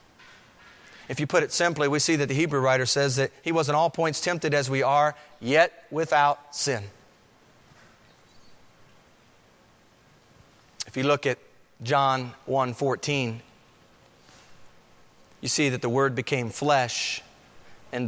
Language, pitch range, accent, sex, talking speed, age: English, 135-180 Hz, American, male, 130 wpm, 40-59